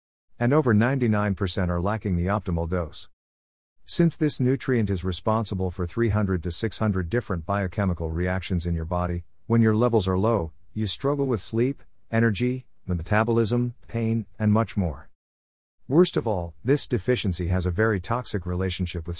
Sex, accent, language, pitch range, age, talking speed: male, American, English, 85-115 Hz, 50-69, 155 wpm